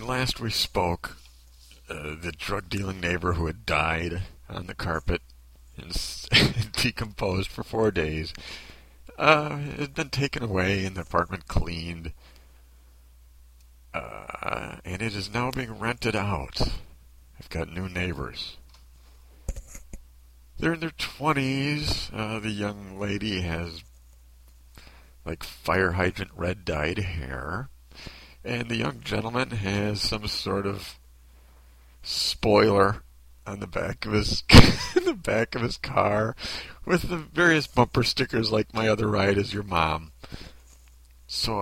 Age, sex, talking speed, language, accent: 50-69, male, 125 wpm, English, American